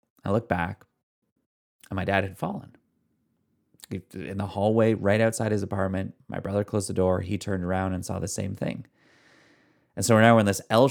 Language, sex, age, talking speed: English, male, 30-49, 195 wpm